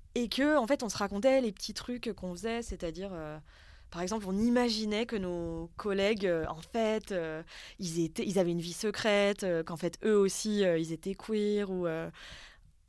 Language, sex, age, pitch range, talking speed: French, female, 20-39, 170-215 Hz, 195 wpm